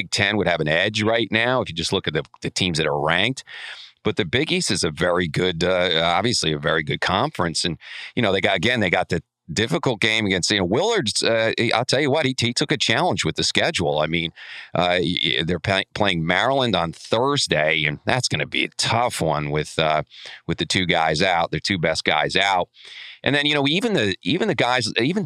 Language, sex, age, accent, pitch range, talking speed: English, male, 40-59, American, 85-130 Hz, 235 wpm